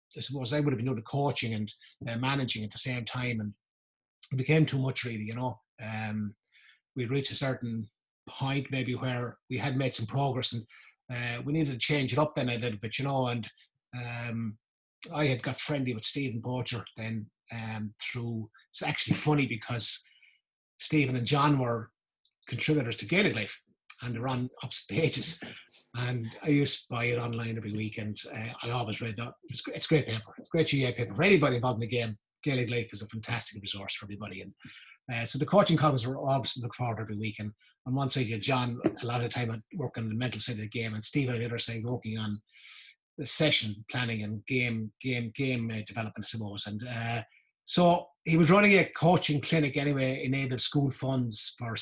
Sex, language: male, English